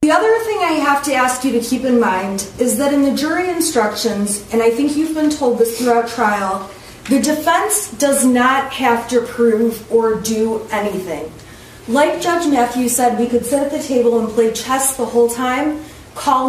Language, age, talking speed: English, 30-49, 195 wpm